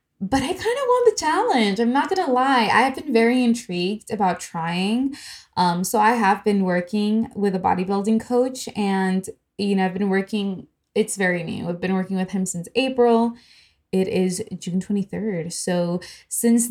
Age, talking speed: 20-39, 180 wpm